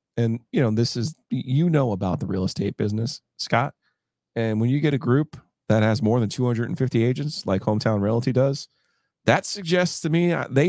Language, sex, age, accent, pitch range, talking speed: English, male, 30-49, American, 100-130 Hz, 190 wpm